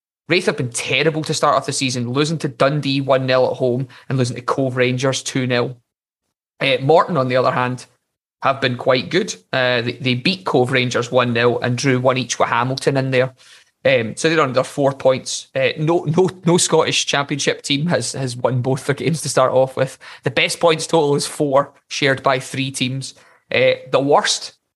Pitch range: 125-145 Hz